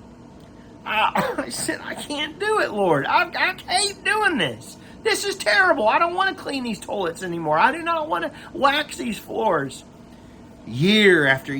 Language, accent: English, American